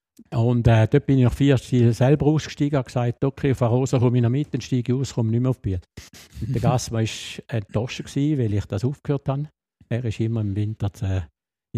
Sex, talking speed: male, 220 wpm